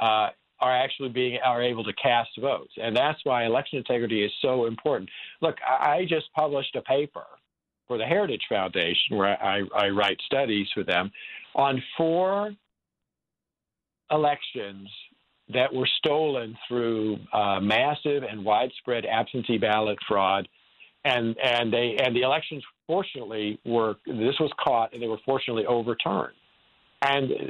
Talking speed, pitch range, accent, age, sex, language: 145 wpm, 115-145 Hz, American, 50-69, male, English